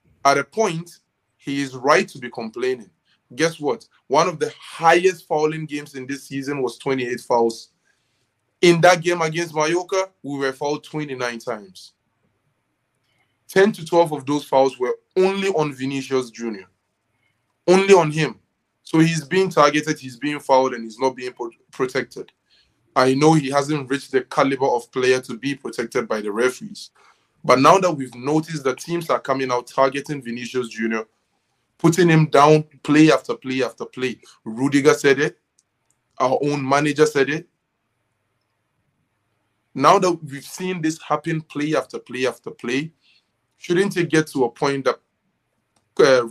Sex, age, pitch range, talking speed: male, 20-39, 125-160 Hz, 160 wpm